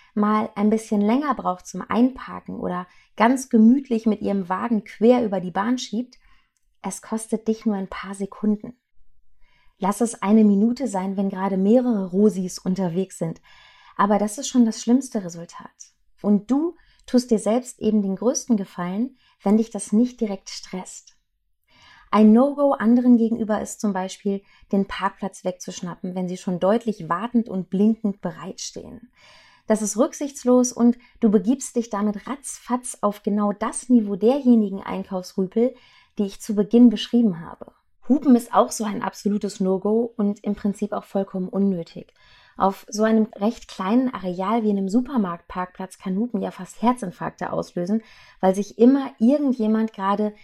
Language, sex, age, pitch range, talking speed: German, female, 30-49, 195-240 Hz, 155 wpm